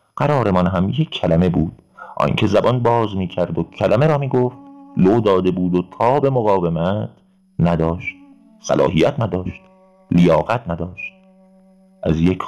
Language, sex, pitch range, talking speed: Persian, male, 90-135 Hz, 125 wpm